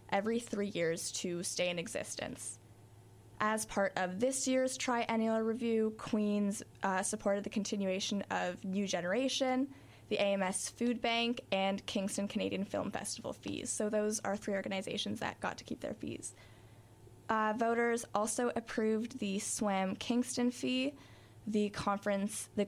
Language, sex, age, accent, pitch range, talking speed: English, female, 10-29, American, 195-235 Hz, 145 wpm